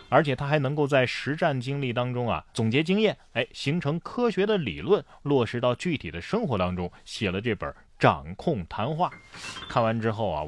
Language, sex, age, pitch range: Chinese, male, 30-49, 100-150 Hz